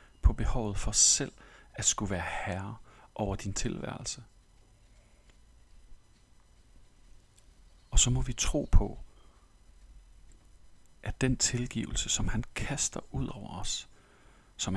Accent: native